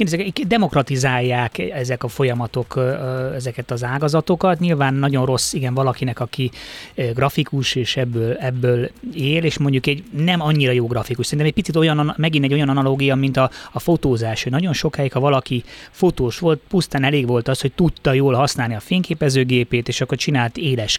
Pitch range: 125-150 Hz